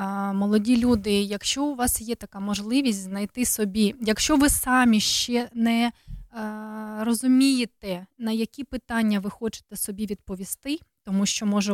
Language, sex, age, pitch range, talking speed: Dutch, female, 20-39, 210-260 Hz, 135 wpm